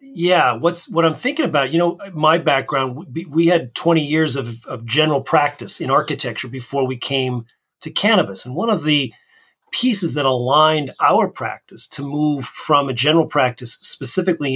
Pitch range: 125-160 Hz